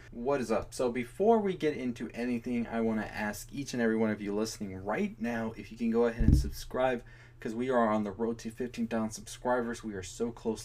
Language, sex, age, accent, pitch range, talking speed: English, male, 20-39, American, 105-125 Hz, 235 wpm